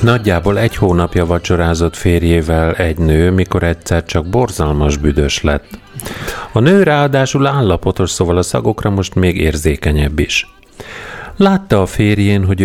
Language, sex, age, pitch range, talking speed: Hungarian, male, 40-59, 80-110 Hz, 135 wpm